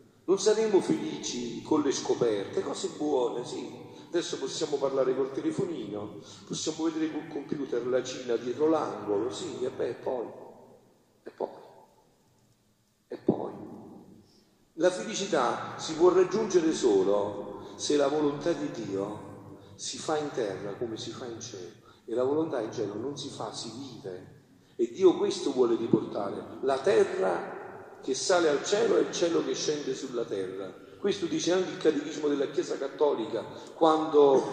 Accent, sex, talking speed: native, male, 150 wpm